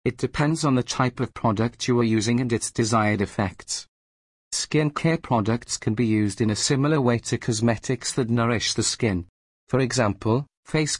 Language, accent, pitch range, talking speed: English, British, 110-130 Hz, 180 wpm